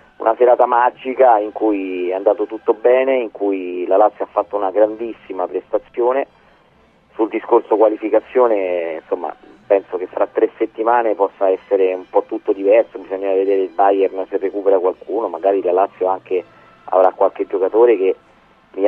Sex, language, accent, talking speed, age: male, Italian, native, 155 wpm, 40-59